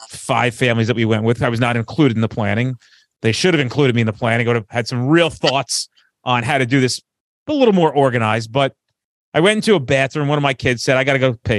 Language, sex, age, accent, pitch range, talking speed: English, male, 30-49, American, 115-155 Hz, 275 wpm